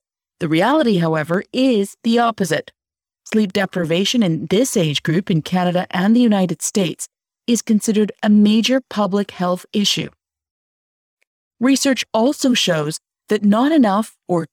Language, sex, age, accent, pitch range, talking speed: English, female, 40-59, American, 175-245 Hz, 130 wpm